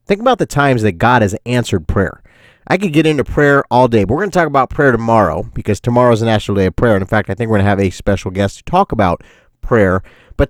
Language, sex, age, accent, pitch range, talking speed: English, male, 30-49, American, 100-135 Hz, 280 wpm